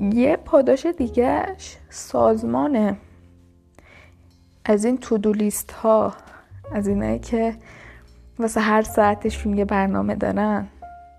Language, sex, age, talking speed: Persian, female, 10-29, 100 wpm